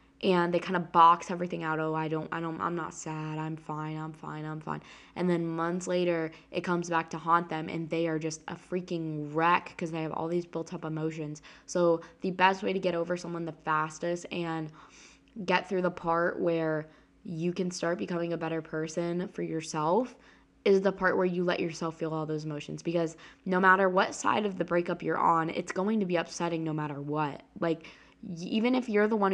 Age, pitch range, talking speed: 10-29, 160-185 Hz, 215 wpm